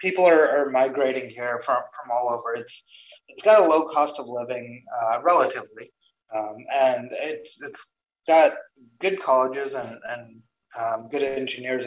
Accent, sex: American, male